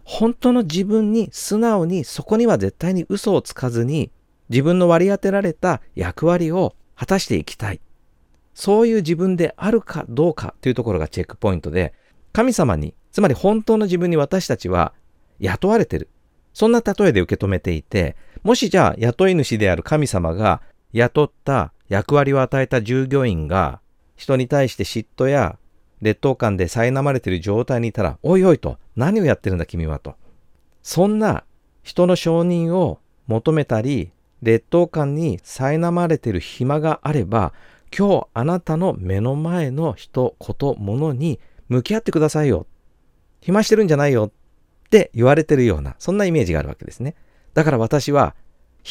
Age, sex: 50-69, male